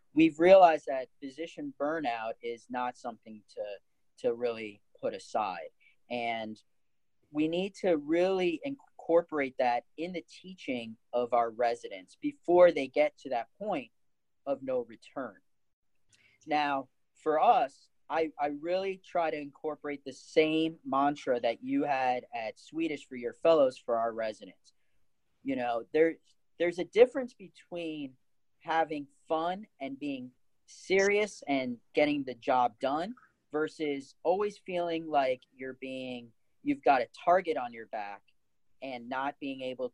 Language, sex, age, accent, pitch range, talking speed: English, male, 40-59, American, 125-175 Hz, 140 wpm